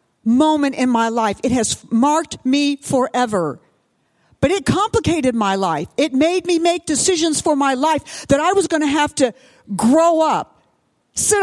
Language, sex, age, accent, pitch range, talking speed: English, female, 50-69, American, 225-325 Hz, 170 wpm